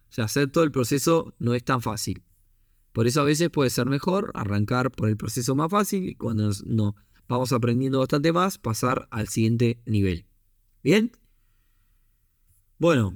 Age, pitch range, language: 20-39, 110-150 Hz, Spanish